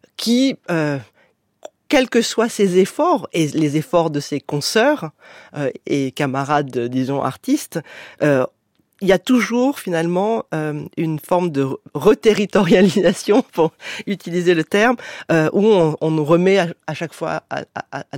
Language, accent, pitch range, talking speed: French, French, 150-195 Hz, 150 wpm